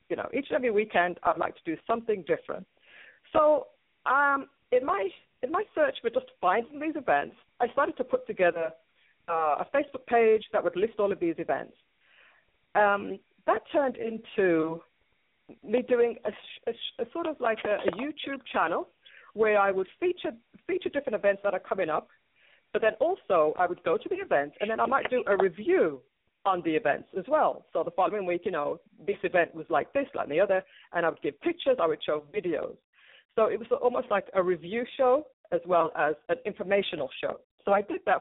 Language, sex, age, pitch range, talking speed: English, female, 50-69, 190-295 Hz, 205 wpm